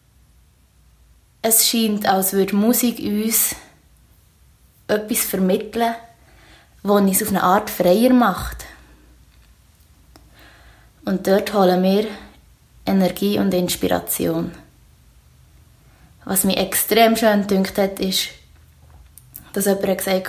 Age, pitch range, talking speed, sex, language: 20-39, 175-210 Hz, 95 wpm, female, German